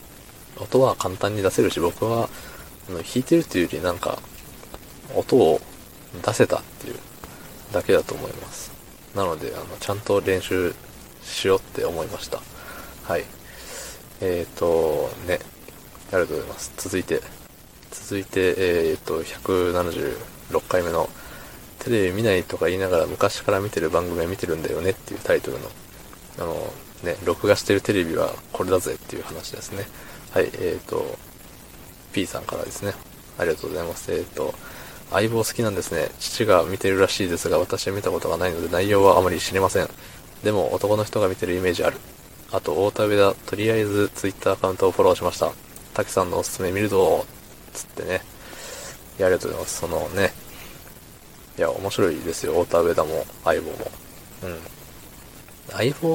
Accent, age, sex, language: native, 20-39, male, Japanese